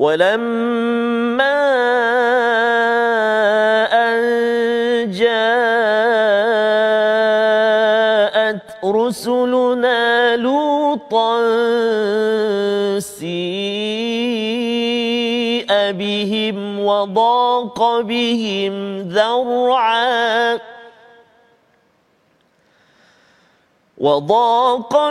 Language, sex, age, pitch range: Malayalam, male, 40-59, 220-275 Hz